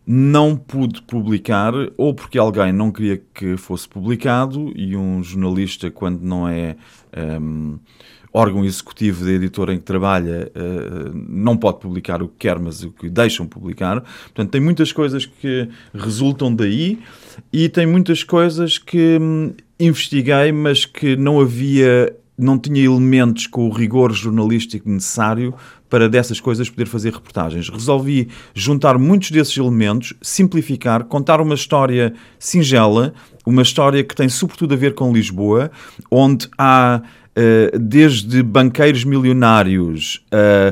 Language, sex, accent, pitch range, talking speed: English, male, Portuguese, 105-140 Hz, 135 wpm